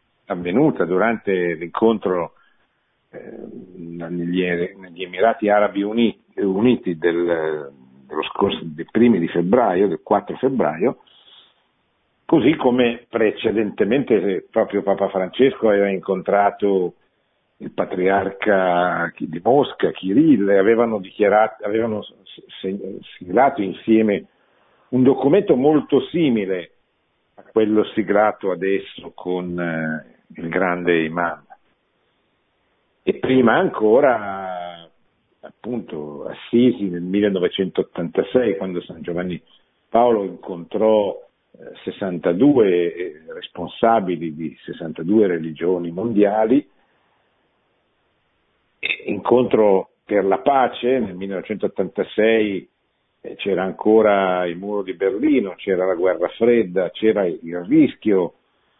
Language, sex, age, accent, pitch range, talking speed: Italian, male, 50-69, native, 90-110 Hz, 90 wpm